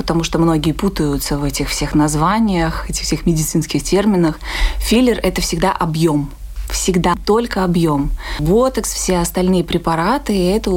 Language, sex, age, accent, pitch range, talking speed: Russian, female, 20-39, native, 160-195 Hz, 145 wpm